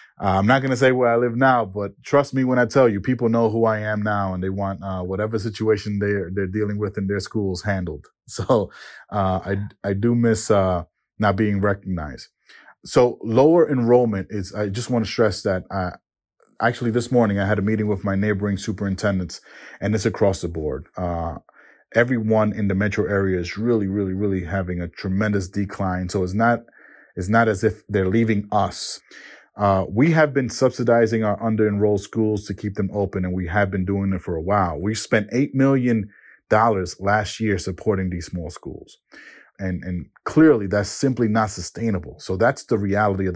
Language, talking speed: English, 195 wpm